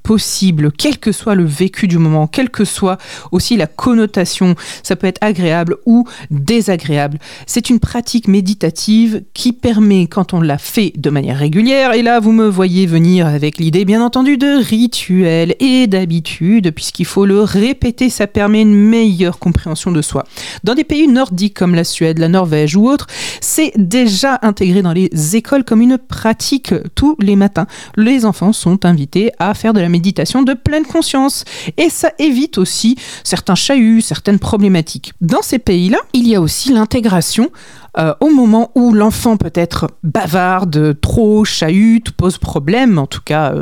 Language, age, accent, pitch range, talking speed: French, 40-59, French, 175-250 Hz, 165 wpm